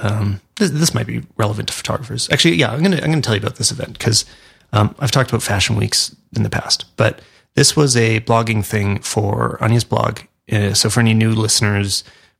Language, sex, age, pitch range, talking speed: English, male, 30-49, 105-120 Hz, 220 wpm